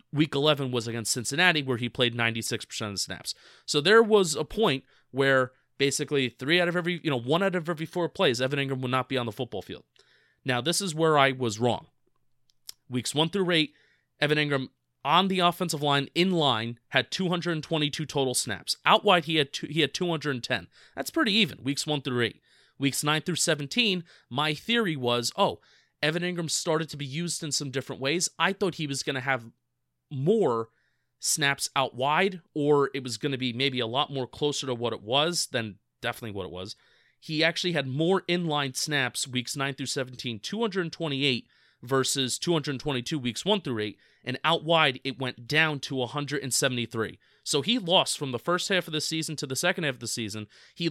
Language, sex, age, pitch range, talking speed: English, male, 30-49, 125-165 Hz, 210 wpm